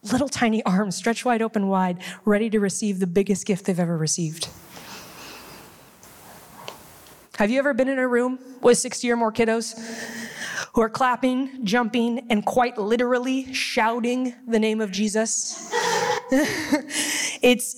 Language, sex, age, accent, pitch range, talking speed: English, female, 20-39, American, 205-245 Hz, 140 wpm